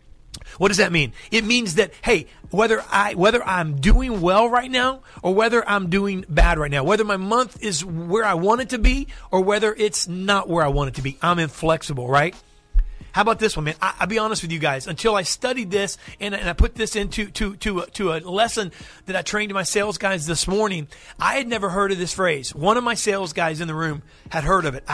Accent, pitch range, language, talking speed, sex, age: American, 160-215 Hz, English, 245 wpm, male, 40-59